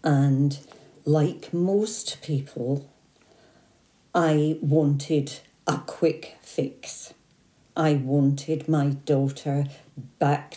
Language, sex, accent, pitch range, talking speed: English, female, British, 145-160 Hz, 80 wpm